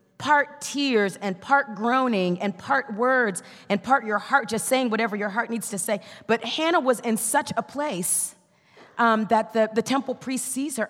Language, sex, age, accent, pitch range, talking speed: English, female, 30-49, American, 180-230 Hz, 195 wpm